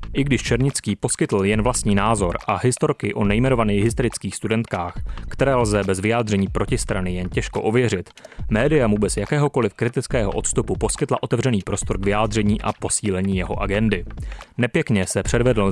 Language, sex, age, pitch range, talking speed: Czech, male, 30-49, 100-120 Hz, 150 wpm